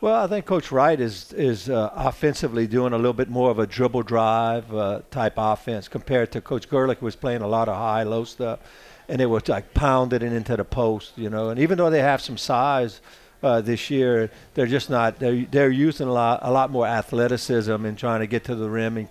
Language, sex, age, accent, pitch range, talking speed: English, male, 50-69, American, 110-130 Hz, 240 wpm